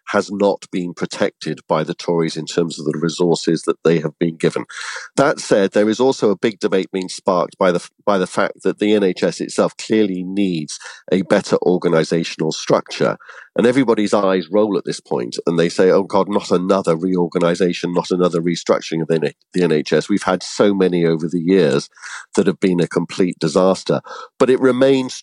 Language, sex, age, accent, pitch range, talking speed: English, male, 50-69, British, 85-105 Hz, 190 wpm